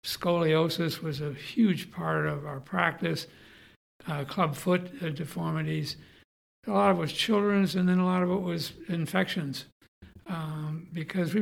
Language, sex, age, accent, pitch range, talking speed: English, male, 60-79, American, 145-170 Hz, 150 wpm